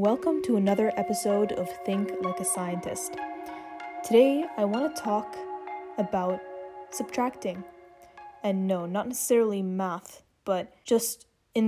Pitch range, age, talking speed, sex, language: 190-230 Hz, 10-29, 125 wpm, female, English